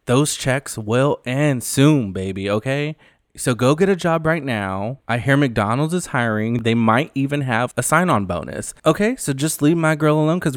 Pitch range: 105-145 Hz